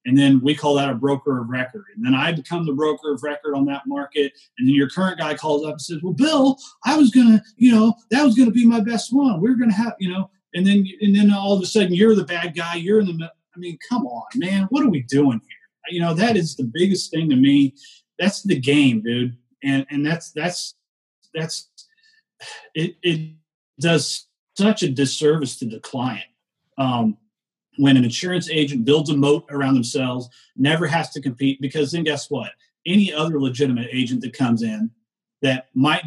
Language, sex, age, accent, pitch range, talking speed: English, male, 40-59, American, 135-195 Hz, 220 wpm